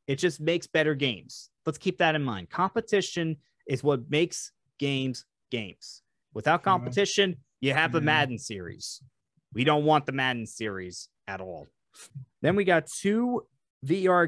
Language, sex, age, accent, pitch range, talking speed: English, male, 30-49, American, 135-180 Hz, 150 wpm